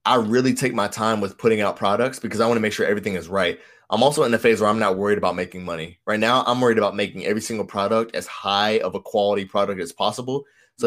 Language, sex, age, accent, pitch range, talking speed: English, male, 20-39, American, 100-120 Hz, 265 wpm